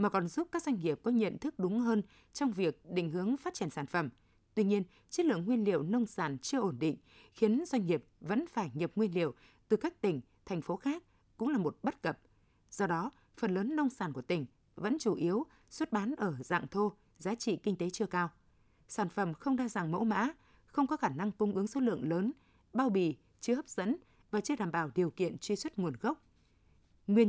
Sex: female